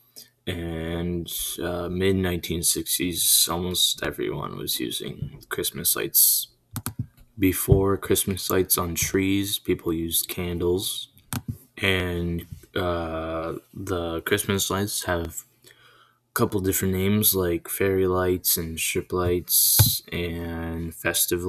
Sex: male